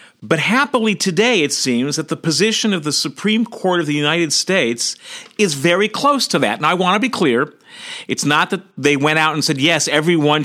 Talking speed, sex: 210 wpm, male